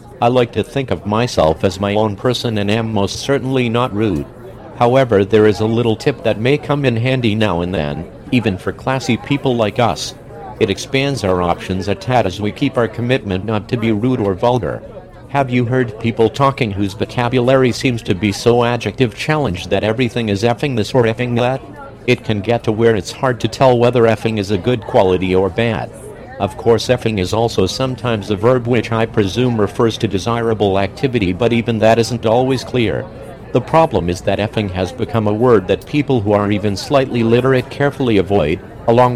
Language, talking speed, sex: English, 200 wpm, male